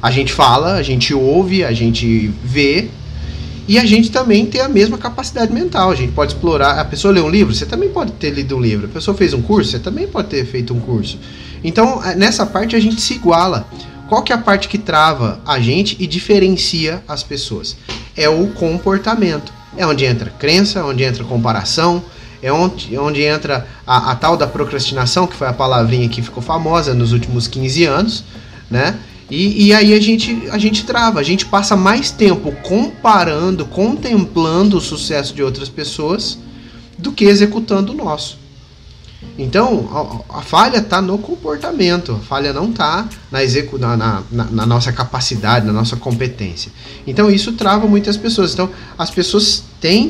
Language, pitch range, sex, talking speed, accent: Portuguese, 125-200 Hz, male, 180 wpm, Brazilian